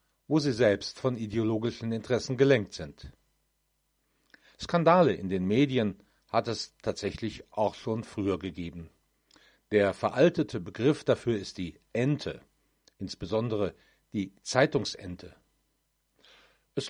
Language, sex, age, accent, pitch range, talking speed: German, male, 50-69, German, 100-140 Hz, 105 wpm